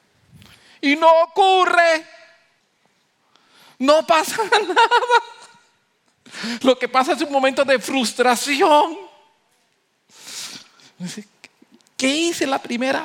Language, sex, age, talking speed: English, male, 50-69, 85 wpm